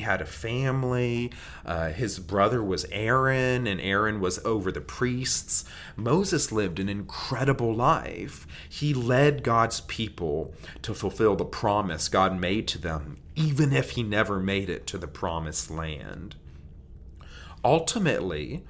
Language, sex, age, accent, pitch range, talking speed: English, male, 30-49, American, 80-125 Hz, 135 wpm